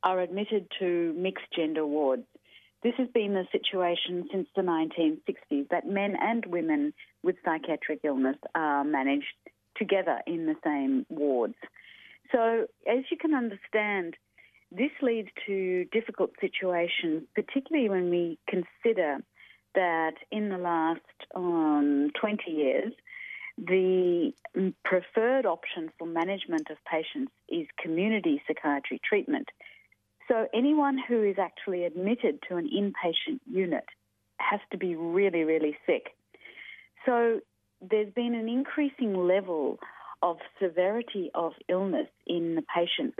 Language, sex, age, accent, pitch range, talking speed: English, female, 40-59, Australian, 170-260 Hz, 120 wpm